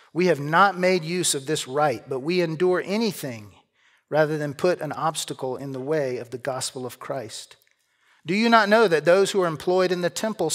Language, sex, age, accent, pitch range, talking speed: English, male, 40-59, American, 145-195 Hz, 210 wpm